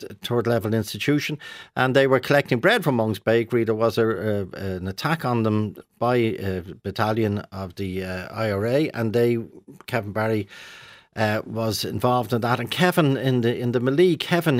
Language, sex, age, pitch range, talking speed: English, male, 50-69, 110-160 Hz, 180 wpm